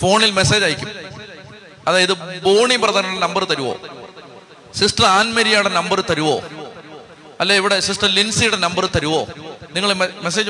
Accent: native